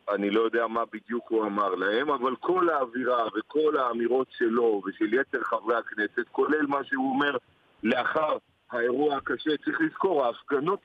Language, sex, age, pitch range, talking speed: Hebrew, male, 50-69, 120-180 Hz, 155 wpm